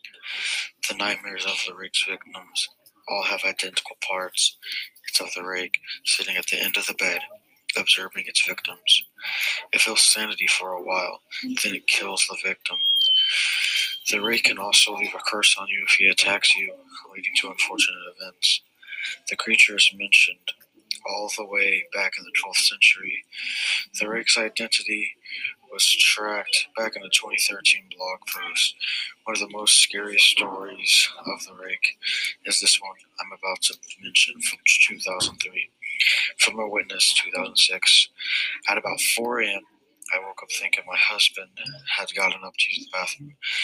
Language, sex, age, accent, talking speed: English, male, 20-39, American, 155 wpm